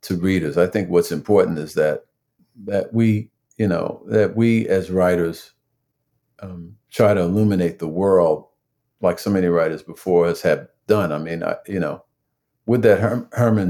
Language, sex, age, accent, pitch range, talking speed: English, male, 50-69, American, 90-115 Hz, 160 wpm